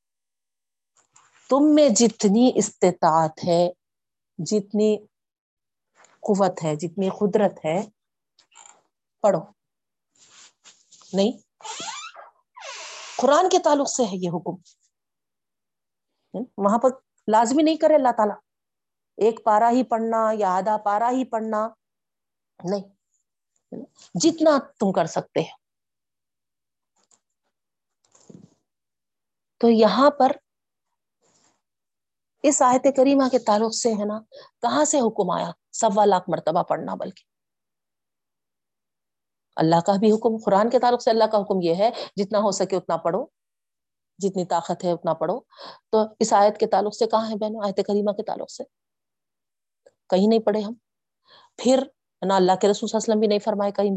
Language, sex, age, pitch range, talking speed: Urdu, female, 50-69, 195-250 Hz, 125 wpm